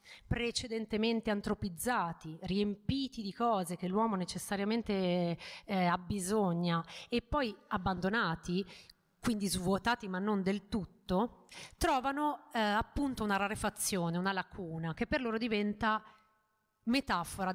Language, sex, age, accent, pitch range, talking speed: Italian, female, 30-49, native, 180-225 Hz, 110 wpm